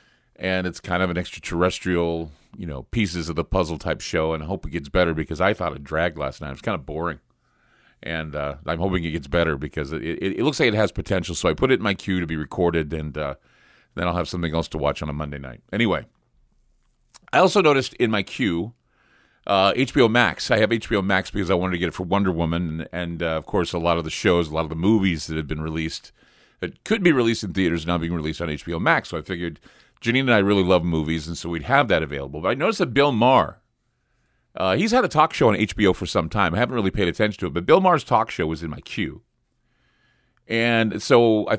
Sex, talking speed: male, 255 wpm